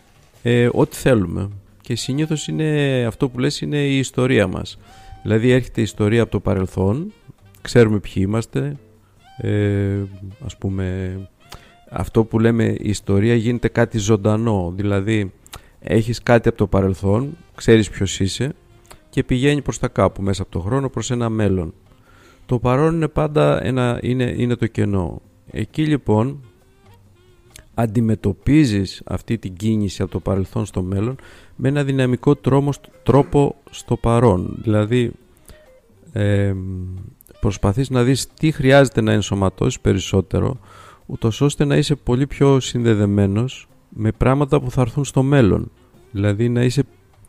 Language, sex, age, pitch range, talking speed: Greek, male, 50-69, 100-130 Hz, 135 wpm